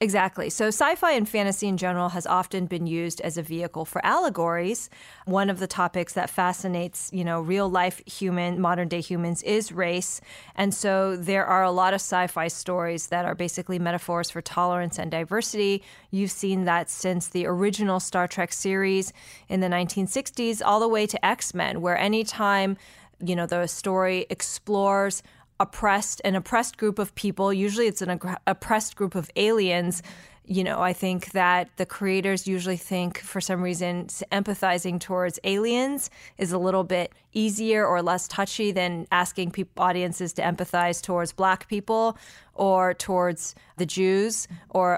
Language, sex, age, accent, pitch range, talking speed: English, female, 20-39, American, 175-200 Hz, 165 wpm